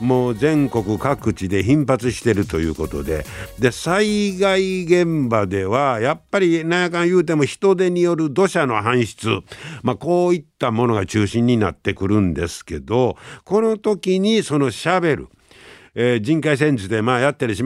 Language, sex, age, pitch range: Japanese, male, 60-79, 100-145 Hz